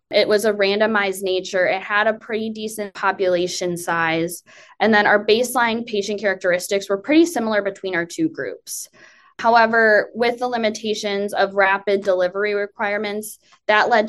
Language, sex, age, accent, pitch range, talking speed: English, female, 10-29, American, 190-225 Hz, 150 wpm